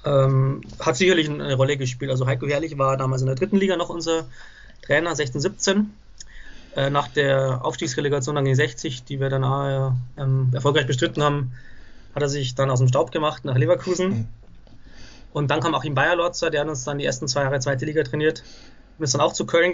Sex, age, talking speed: male, 20-39, 210 wpm